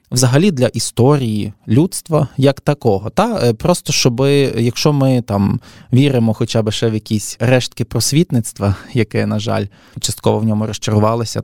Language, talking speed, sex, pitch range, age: Ukrainian, 140 wpm, male, 110-140 Hz, 20-39